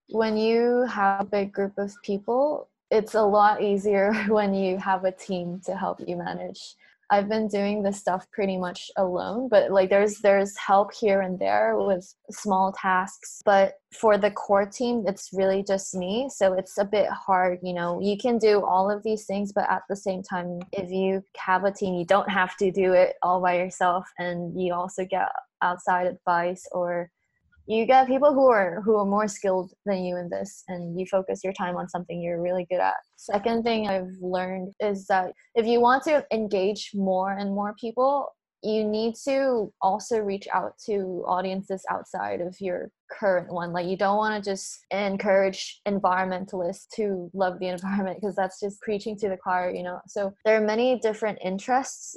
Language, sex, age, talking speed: English, female, 20-39, 195 wpm